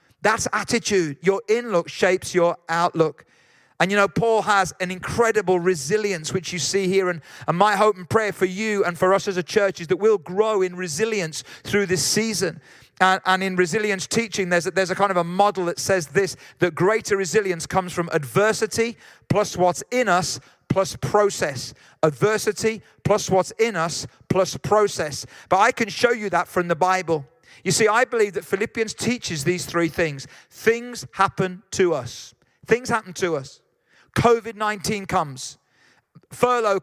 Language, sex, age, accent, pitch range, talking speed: English, male, 40-59, British, 175-215 Hz, 175 wpm